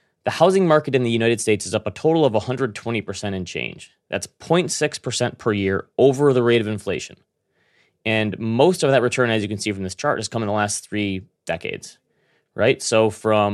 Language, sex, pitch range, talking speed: English, male, 100-130 Hz, 205 wpm